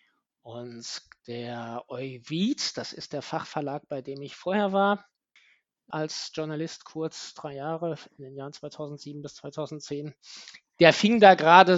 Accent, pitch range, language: German, 140-165 Hz, German